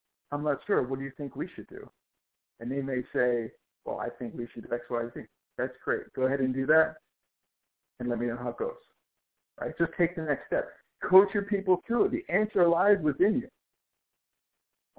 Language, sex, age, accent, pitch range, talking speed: English, male, 50-69, American, 125-160 Hz, 220 wpm